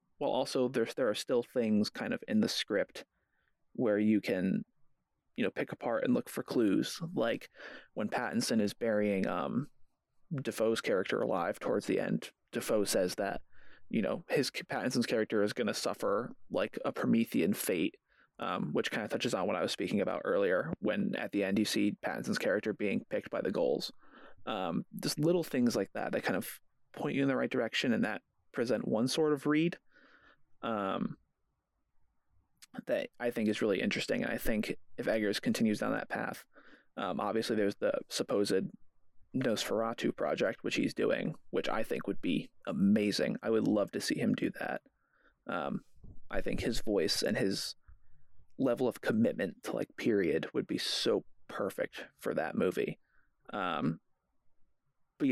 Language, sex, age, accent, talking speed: English, male, 30-49, American, 175 wpm